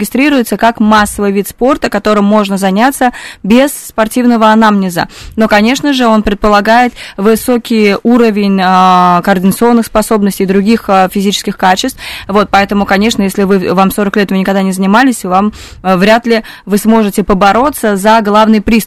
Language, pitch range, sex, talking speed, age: Russian, 195-225 Hz, female, 155 wpm, 20-39